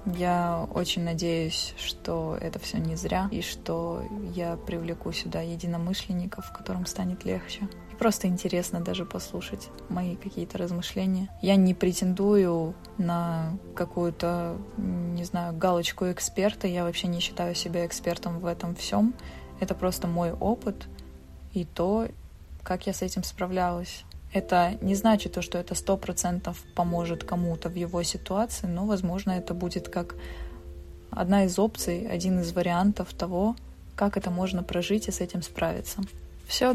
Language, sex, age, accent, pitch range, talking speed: Russian, female, 20-39, native, 170-195 Hz, 145 wpm